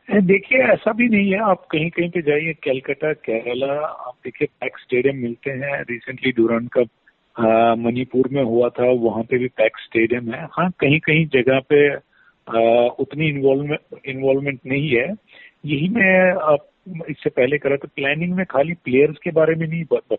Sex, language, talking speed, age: male, Hindi, 170 wpm, 40-59